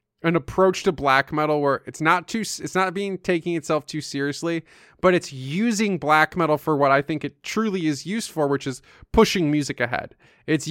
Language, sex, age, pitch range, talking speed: English, male, 20-39, 140-175 Hz, 200 wpm